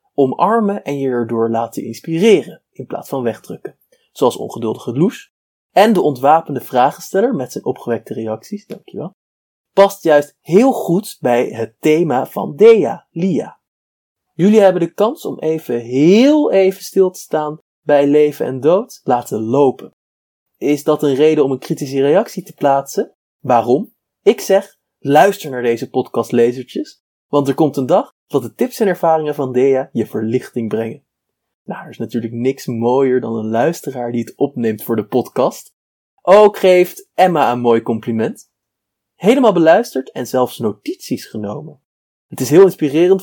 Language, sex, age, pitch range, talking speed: Dutch, male, 20-39, 120-180 Hz, 155 wpm